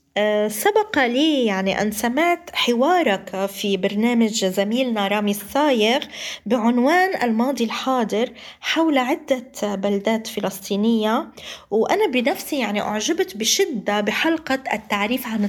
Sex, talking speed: female, 100 wpm